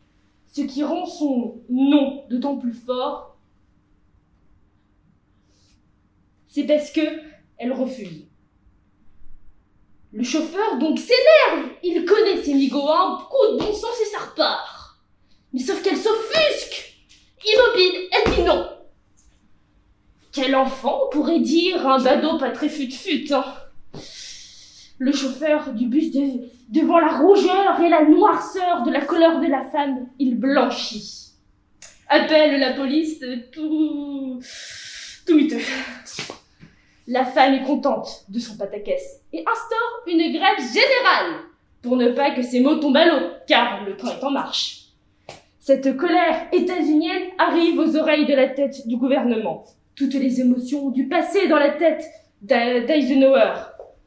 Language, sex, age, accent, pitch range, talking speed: French, female, 20-39, French, 250-320 Hz, 130 wpm